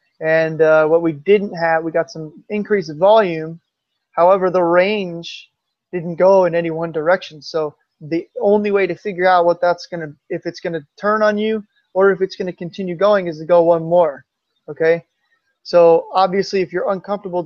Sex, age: male, 20-39